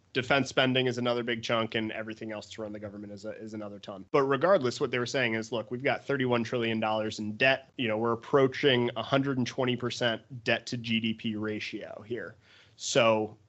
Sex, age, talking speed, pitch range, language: male, 30-49, 190 wpm, 110-125 Hz, English